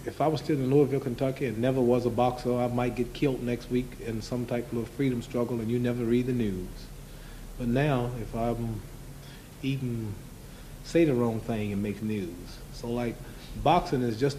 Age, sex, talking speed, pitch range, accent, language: 40-59, male, 200 wpm, 115-135 Hz, American, English